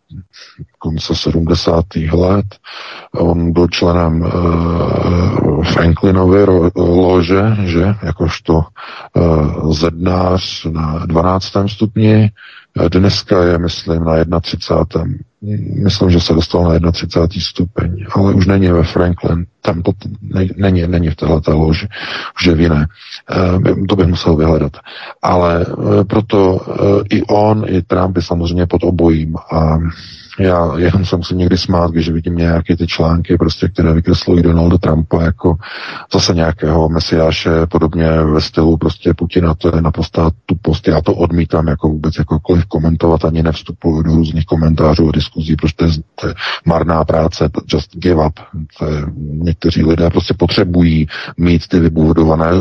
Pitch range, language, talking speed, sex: 80-95 Hz, Czech, 140 wpm, male